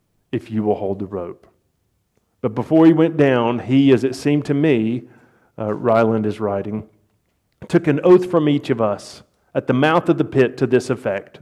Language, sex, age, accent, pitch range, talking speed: English, male, 40-59, American, 110-130 Hz, 195 wpm